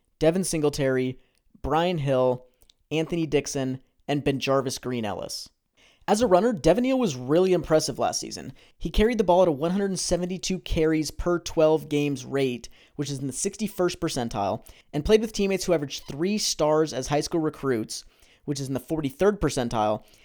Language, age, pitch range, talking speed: English, 30-49, 140-185 Hz, 165 wpm